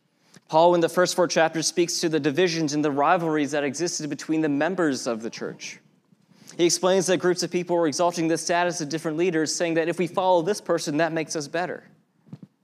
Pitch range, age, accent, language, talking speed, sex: 155-180 Hz, 20-39, American, English, 215 wpm, male